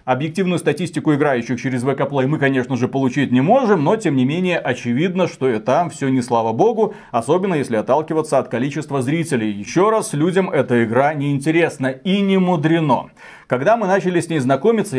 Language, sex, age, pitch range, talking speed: Russian, male, 30-49, 140-185 Hz, 175 wpm